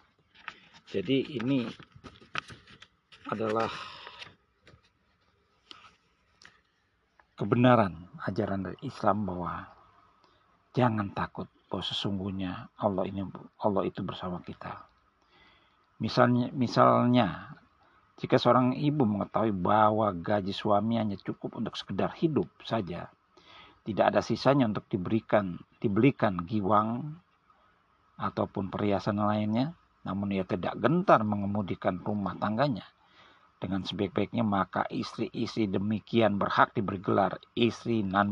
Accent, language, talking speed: native, Indonesian, 95 wpm